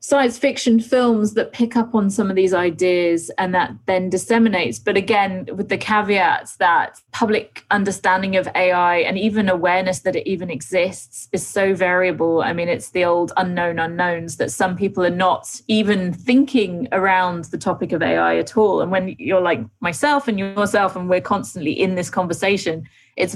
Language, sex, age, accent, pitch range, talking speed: English, female, 20-39, British, 180-220 Hz, 180 wpm